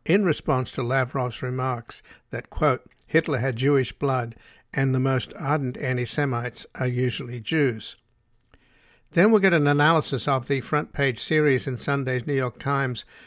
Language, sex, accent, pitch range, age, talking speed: English, male, American, 125-145 Hz, 60-79, 150 wpm